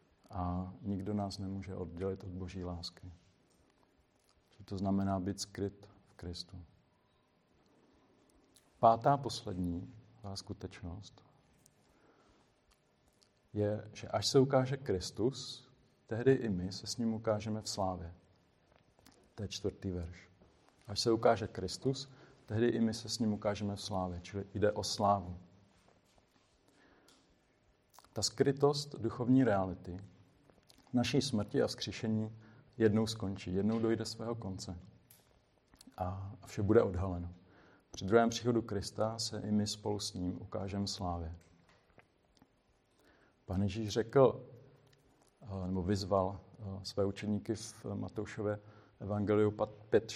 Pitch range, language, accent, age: 95-115 Hz, Czech, native, 40-59